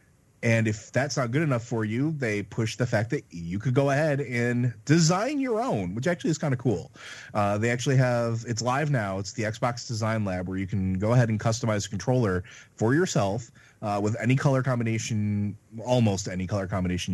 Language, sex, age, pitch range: English, male, 30-49, 95-125 Hz